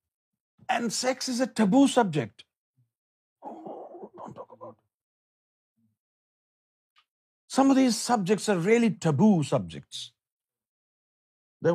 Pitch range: 120-195 Hz